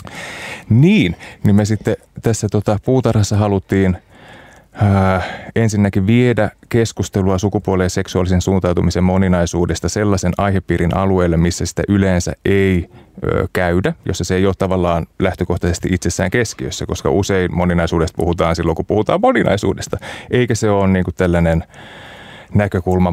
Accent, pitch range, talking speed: native, 85-105 Hz, 115 wpm